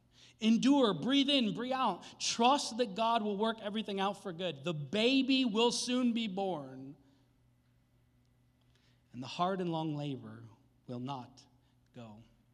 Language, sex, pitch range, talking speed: English, male, 130-195 Hz, 140 wpm